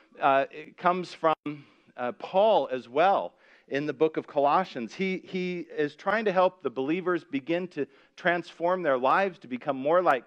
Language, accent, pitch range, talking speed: English, American, 130-180 Hz, 175 wpm